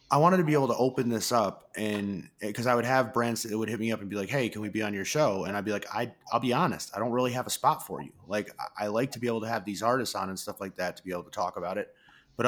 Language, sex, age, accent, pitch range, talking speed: English, male, 30-49, American, 105-125 Hz, 335 wpm